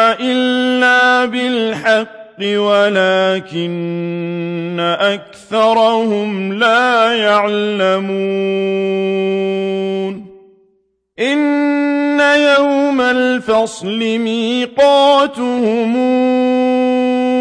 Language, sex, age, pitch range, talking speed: Arabic, male, 50-69, 195-250 Hz, 35 wpm